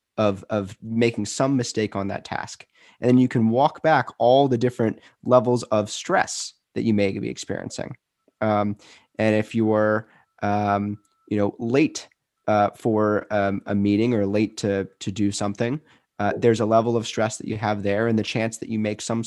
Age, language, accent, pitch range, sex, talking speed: 20-39, English, American, 105-130 Hz, male, 195 wpm